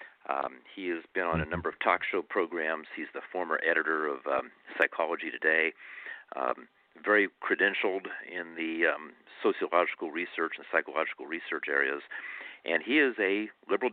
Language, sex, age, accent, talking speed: English, male, 60-79, American, 155 wpm